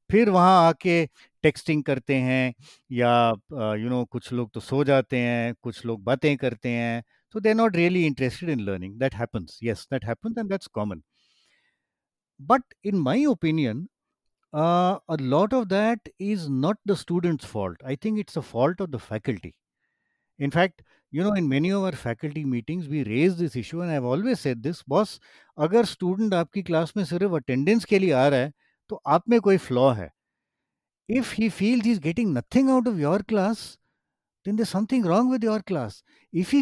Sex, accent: male, Indian